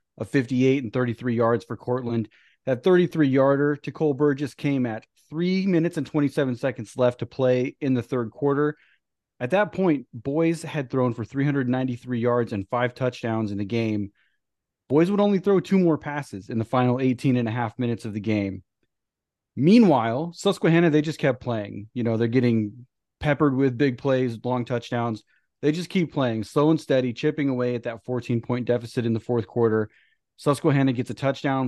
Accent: American